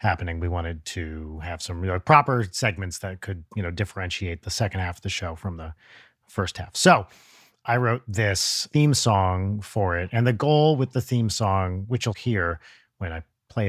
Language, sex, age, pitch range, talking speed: English, male, 30-49, 90-120 Hz, 195 wpm